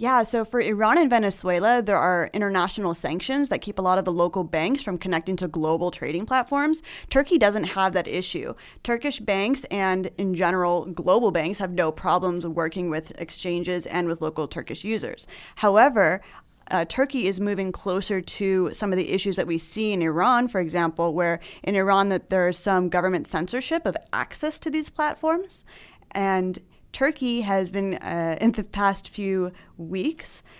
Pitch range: 175-215 Hz